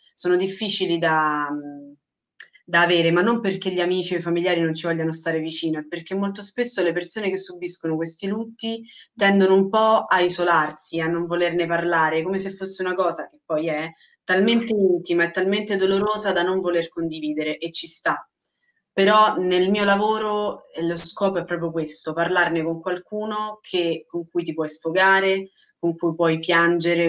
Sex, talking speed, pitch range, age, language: female, 175 wpm, 160-190 Hz, 20-39, Italian